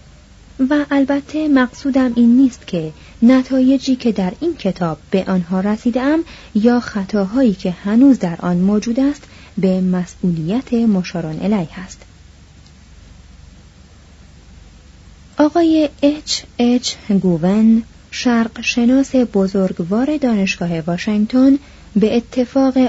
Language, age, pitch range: Persian, 30-49, 170-250 Hz